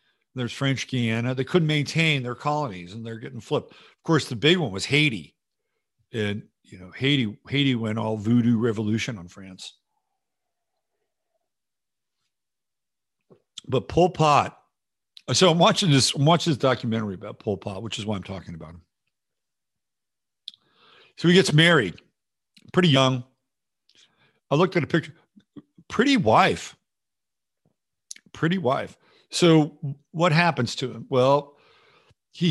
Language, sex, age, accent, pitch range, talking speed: English, male, 50-69, American, 120-160 Hz, 135 wpm